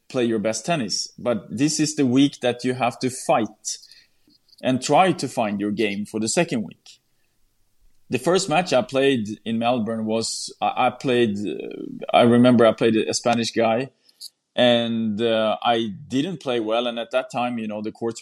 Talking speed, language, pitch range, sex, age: 180 wpm, English, 115-140 Hz, male, 30-49